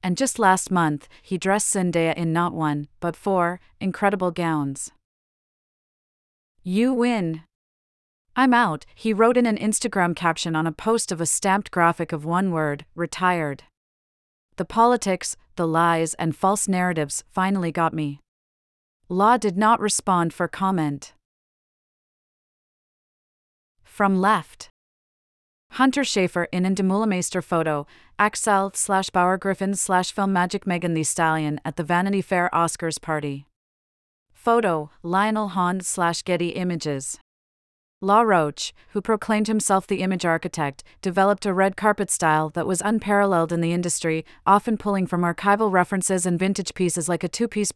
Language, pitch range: English, 165-200 Hz